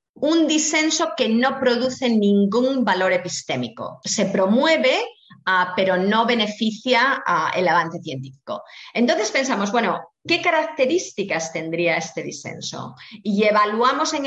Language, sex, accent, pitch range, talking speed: Spanish, female, Spanish, 185-255 Hz, 115 wpm